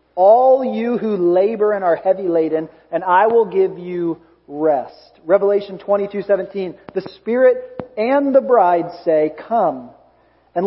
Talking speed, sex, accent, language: 145 wpm, male, American, English